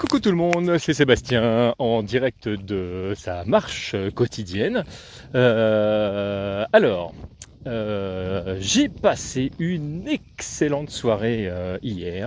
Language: French